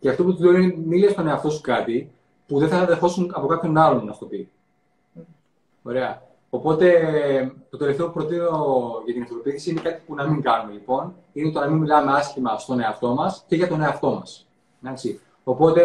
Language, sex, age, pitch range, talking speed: Greek, male, 20-39, 130-165 Hz, 195 wpm